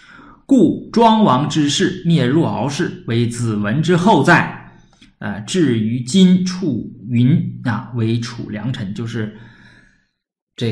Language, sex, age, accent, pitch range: Chinese, male, 20-39, native, 110-135 Hz